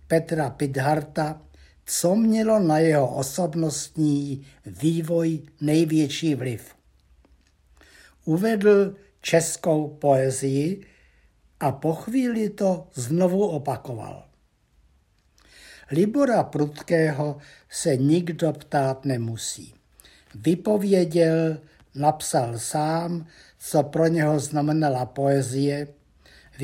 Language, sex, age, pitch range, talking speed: Czech, male, 60-79, 135-160 Hz, 75 wpm